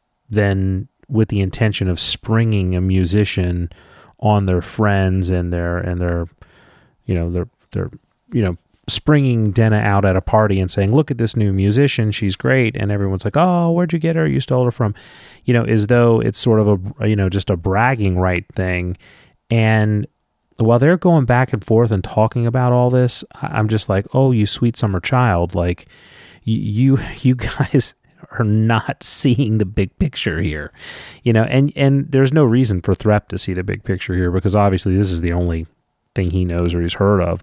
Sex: male